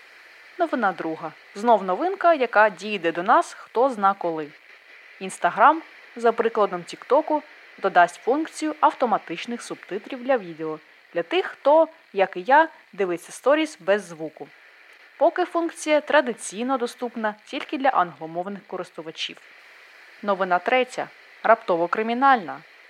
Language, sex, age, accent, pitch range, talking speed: Ukrainian, female, 20-39, native, 180-275 Hz, 115 wpm